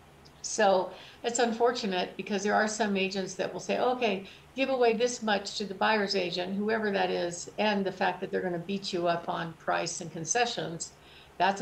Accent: American